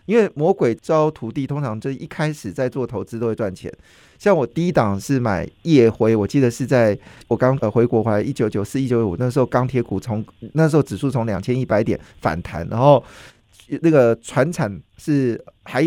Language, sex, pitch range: Chinese, male, 115-160 Hz